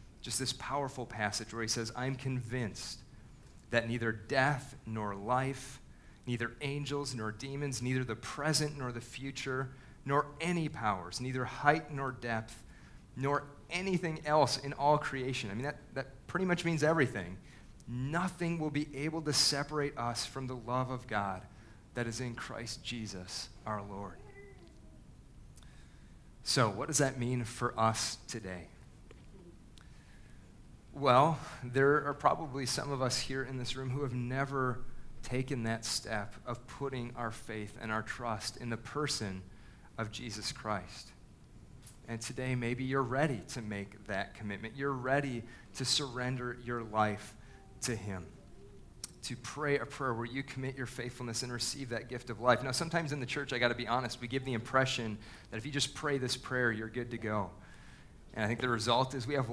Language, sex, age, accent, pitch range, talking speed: English, male, 40-59, American, 115-135 Hz, 165 wpm